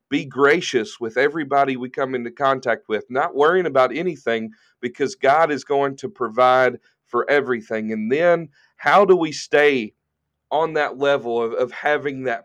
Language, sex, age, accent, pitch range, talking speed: English, male, 40-59, American, 115-145 Hz, 165 wpm